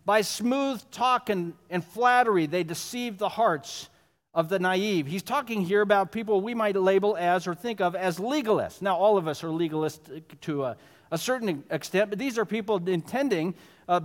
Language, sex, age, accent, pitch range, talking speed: English, male, 50-69, American, 160-220 Hz, 190 wpm